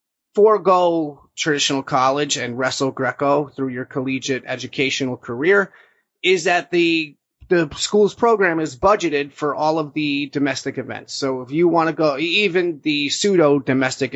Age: 30-49